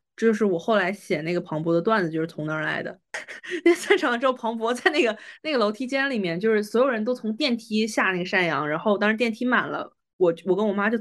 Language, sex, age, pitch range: Chinese, female, 20-39, 175-230 Hz